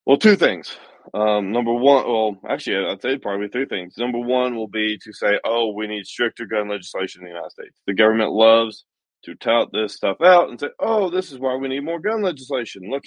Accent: American